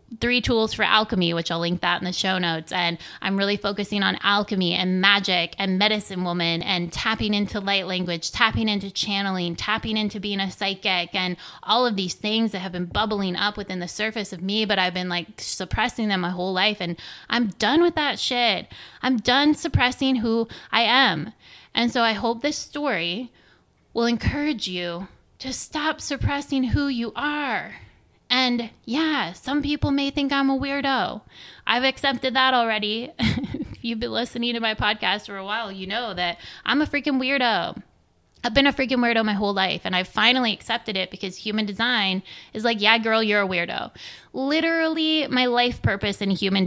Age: 20-39